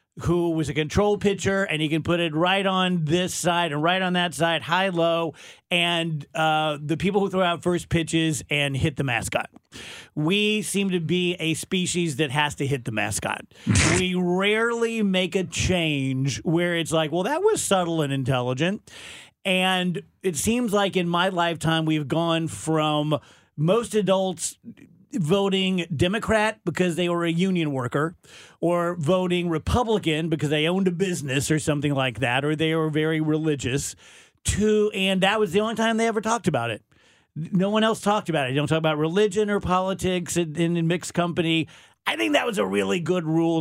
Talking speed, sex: 185 wpm, male